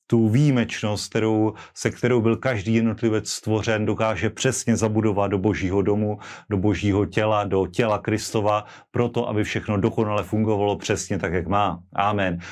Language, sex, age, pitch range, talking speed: Slovak, male, 30-49, 95-110 Hz, 145 wpm